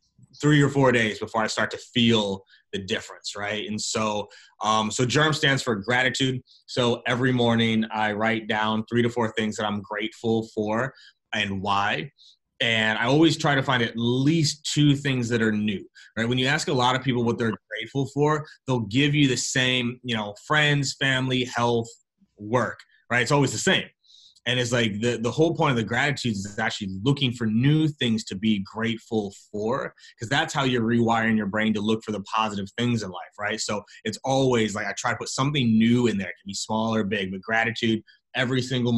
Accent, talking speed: American, 210 wpm